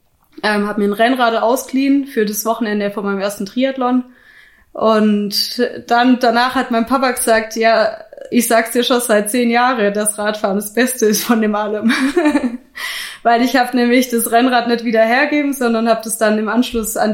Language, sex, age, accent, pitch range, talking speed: German, female, 20-39, German, 205-240 Hz, 180 wpm